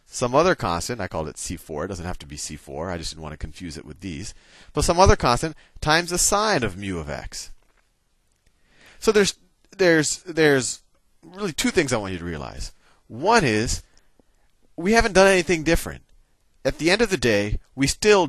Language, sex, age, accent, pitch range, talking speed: English, male, 40-59, American, 90-150 Hz, 205 wpm